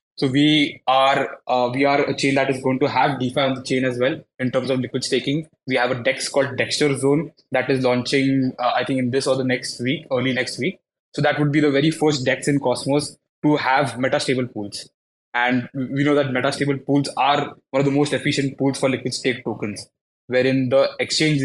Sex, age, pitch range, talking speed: male, 20-39, 125-145 Hz, 230 wpm